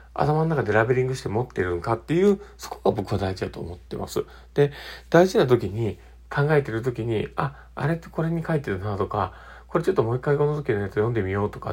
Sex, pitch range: male, 90-145 Hz